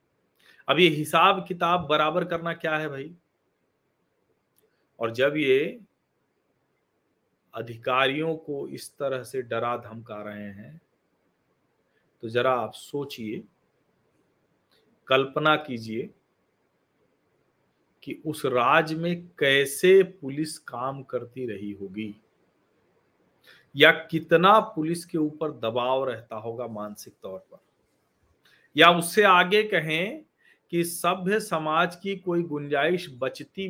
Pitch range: 135-170 Hz